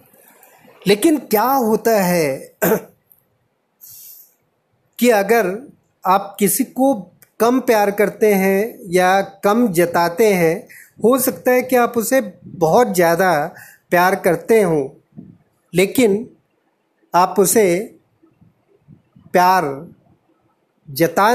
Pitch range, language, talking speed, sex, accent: 165-215 Hz, Hindi, 95 wpm, male, native